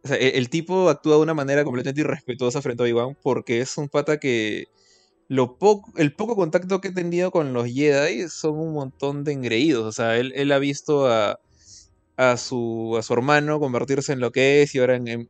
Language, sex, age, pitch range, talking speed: Spanish, male, 20-39, 120-150 Hz, 220 wpm